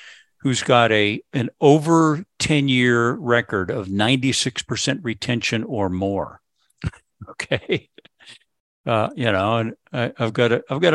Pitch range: 115-140 Hz